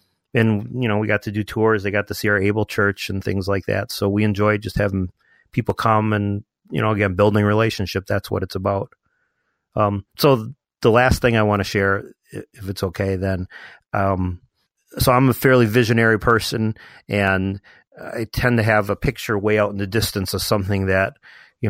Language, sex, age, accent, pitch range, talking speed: English, male, 40-59, American, 100-110 Hz, 200 wpm